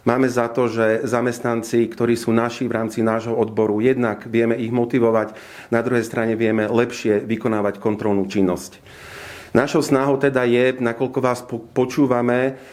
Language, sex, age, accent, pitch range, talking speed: English, male, 40-59, Czech, 110-130 Hz, 145 wpm